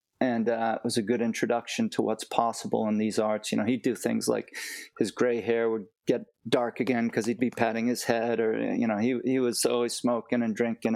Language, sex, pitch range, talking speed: English, male, 110-125 Hz, 230 wpm